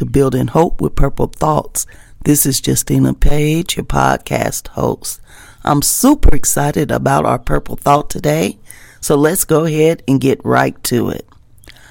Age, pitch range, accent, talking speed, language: 40-59, 105-150 Hz, American, 155 wpm, English